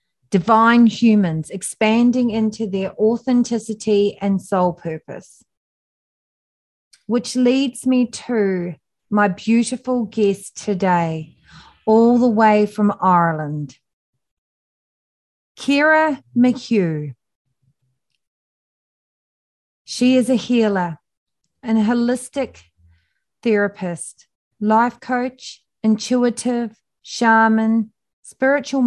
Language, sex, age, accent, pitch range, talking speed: English, female, 30-49, Australian, 195-240 Hz, 75 wpm